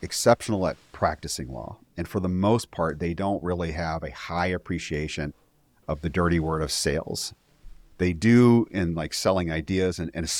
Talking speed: 175 wpm